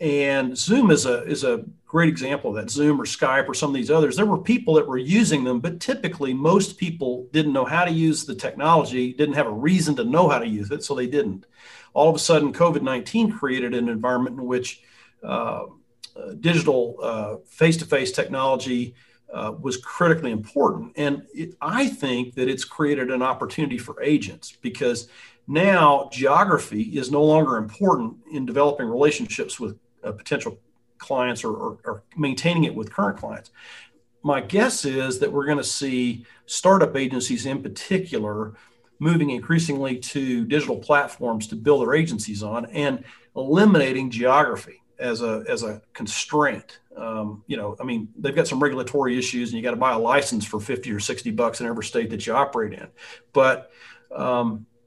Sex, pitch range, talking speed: male, 125-165 Hz, 175 wpm